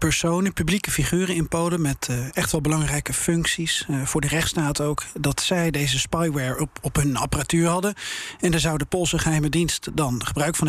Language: Dutch